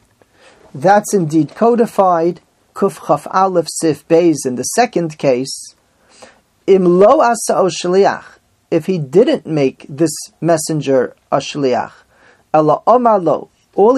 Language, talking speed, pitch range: English, 105 wpm, 150-205 Hz